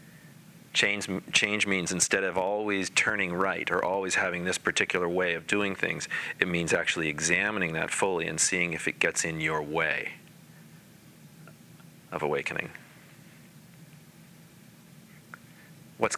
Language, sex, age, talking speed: English, male, 40-59, 125 wpm